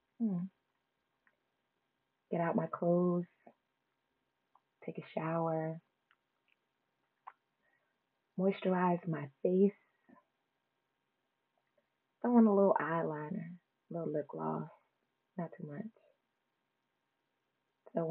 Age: 30-49